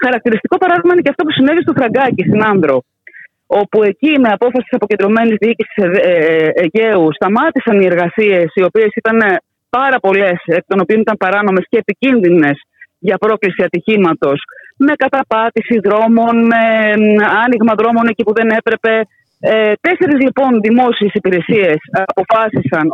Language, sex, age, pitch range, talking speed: Greek, female, 30-49, 190-265 Hz, 135 wpm